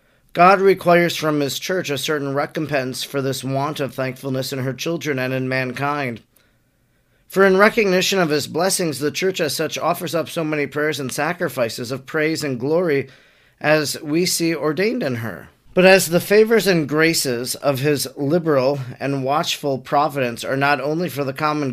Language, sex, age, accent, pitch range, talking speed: English, male, 40-59, American, 135-165 Hz, 175 wpm